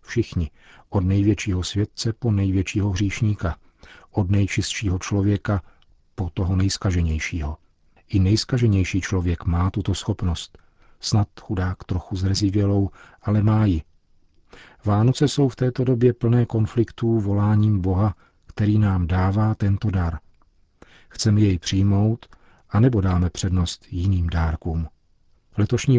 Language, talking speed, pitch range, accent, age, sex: Czech, 115 wpm, 90-110 Hz, native, 40-59, male